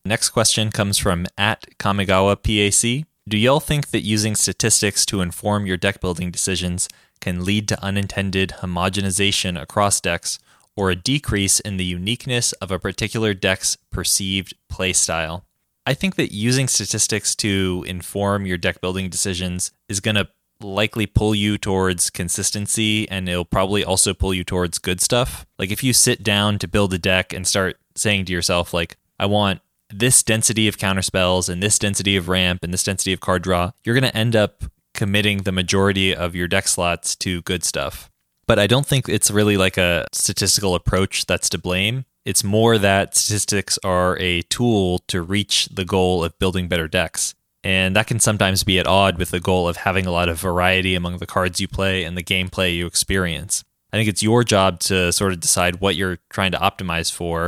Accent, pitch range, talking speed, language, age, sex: American, 90-105 Hz, 190 wpm, English, 20-39, male